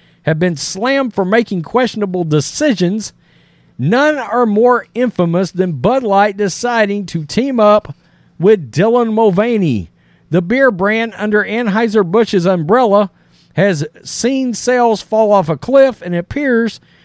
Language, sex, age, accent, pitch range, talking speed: English, male, 50-69, American, 175-235 Hz, 125 wpm